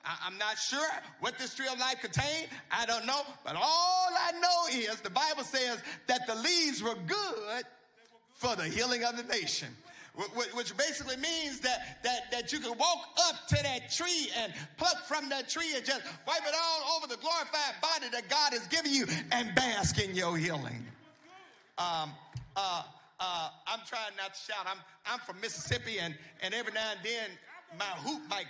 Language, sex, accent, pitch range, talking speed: English, male, American, 210-275 Hz, 185 wpm